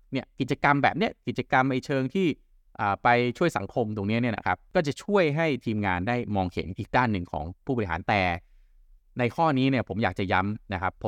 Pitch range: 95-135 Hz